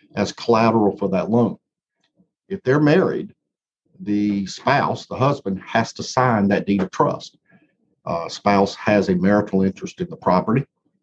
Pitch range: 100-125 Hz